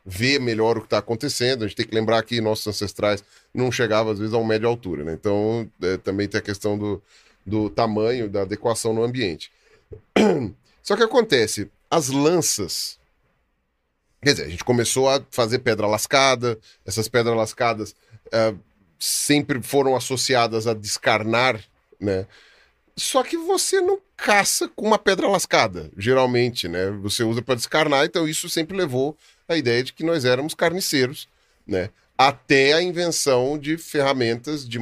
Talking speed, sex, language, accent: 160 wpm, male, Portuguese, Brazilian